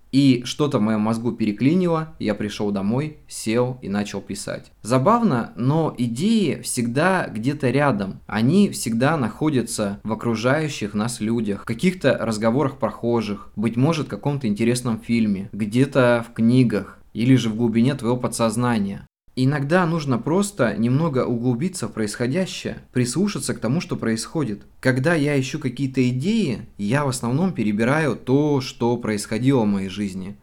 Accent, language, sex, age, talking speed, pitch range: native, Russian, male, 20-39, 140 wpm, 115-150 Hz